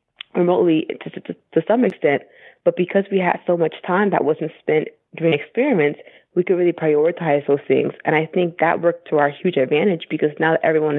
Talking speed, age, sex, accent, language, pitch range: 200 wpm, 20-39, female, American, English, 150-175 Hz